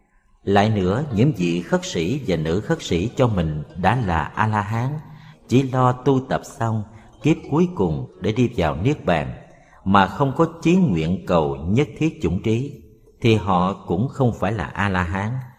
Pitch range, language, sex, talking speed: 90-135 Hz, Vietnamese, male, 170 wpm